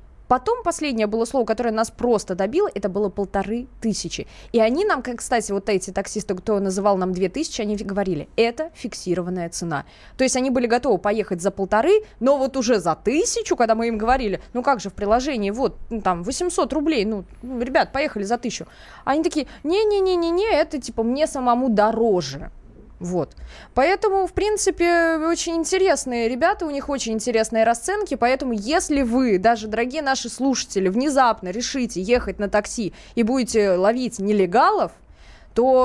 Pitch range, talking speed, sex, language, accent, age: 205-280 Hz, 160 wpm, female, Russian, native, 20-39